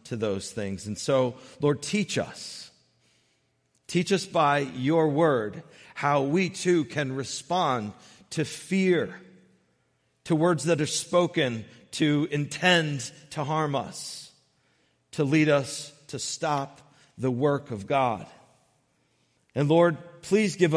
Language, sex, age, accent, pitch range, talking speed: English, male, 40-59, American, 95-150 Hz, 125 wpm